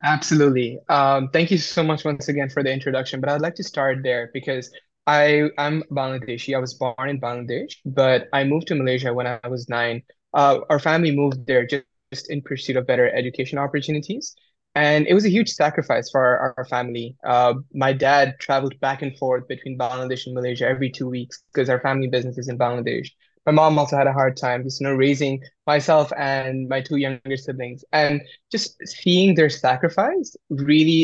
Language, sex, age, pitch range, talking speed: English, male, 20-39, 125-145 Hz, 195 wpm